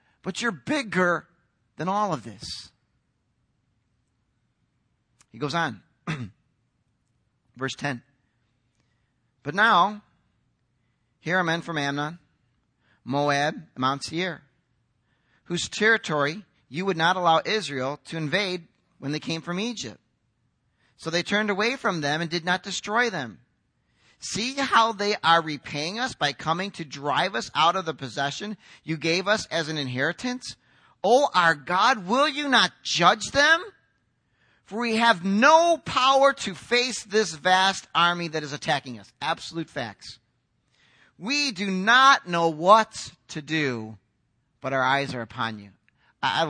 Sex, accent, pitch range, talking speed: male, American, 130-215 Hz, 135 wpm